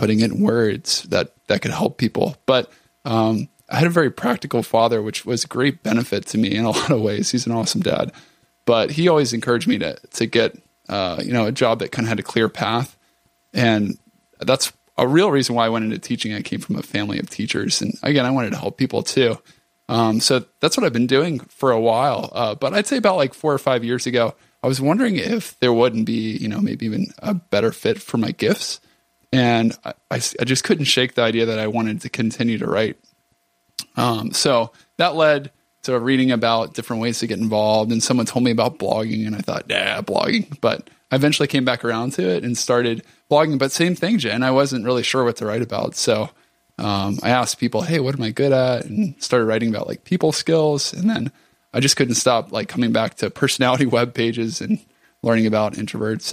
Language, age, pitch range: English, 20-39, 115-145 Hz